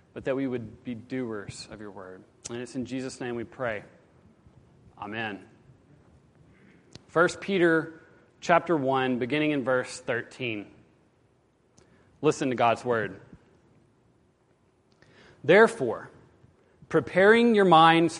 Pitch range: 125-165 Hz